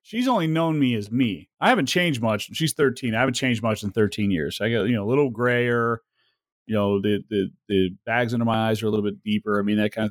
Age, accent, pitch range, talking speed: 30-49, American, 115-150 Hz, 265 wpm